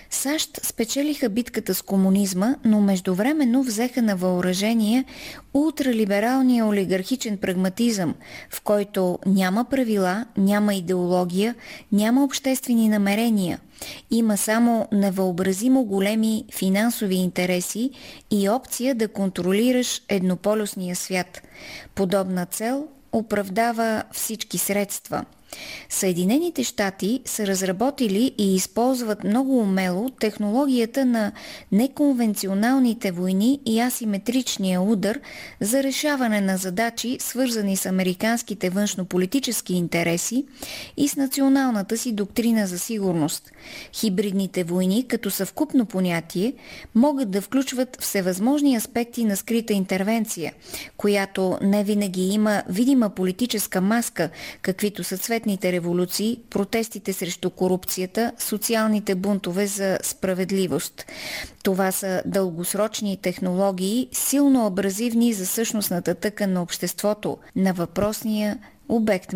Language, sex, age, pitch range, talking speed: Bulgarian, female, 20-39, 190-240 Hz, 100 wpm